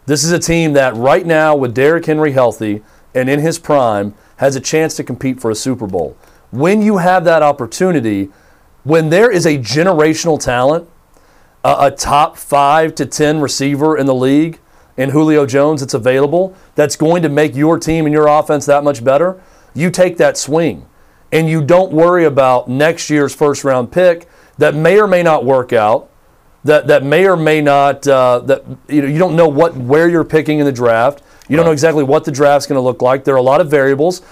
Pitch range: 135-170 Hz